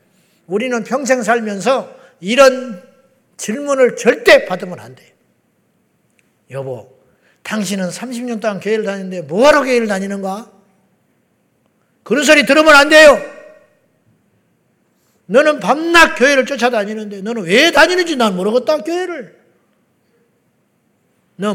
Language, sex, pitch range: Korean, male, 210-290 Hz